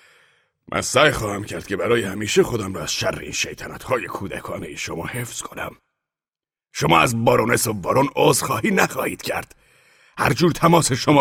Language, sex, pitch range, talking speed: Persian, male, 120-180 Hz, 160 wpm